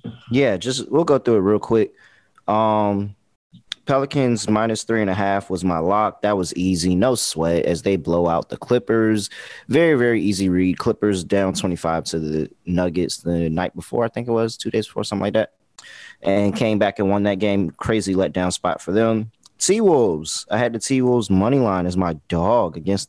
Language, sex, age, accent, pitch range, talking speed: English, male, 20-39, American, 90-115 Hz, 195 wpm